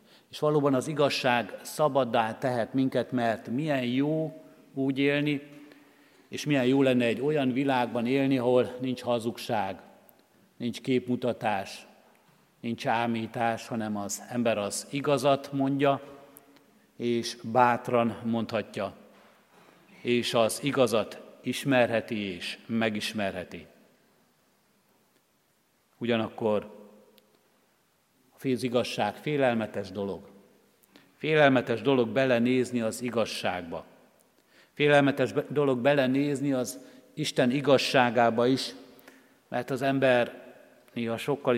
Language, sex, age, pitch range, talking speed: Hungarian, male, 50-69, 115-135 Hz, 90 wpm